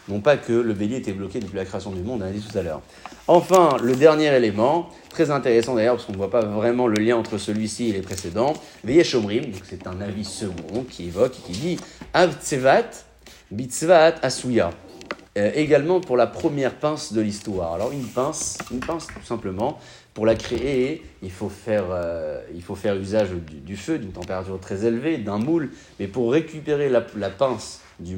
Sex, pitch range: male, 95-120 Hz